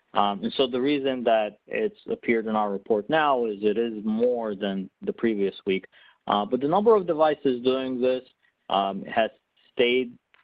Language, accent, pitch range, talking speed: English, American, 95-120 Hz, 180 wpm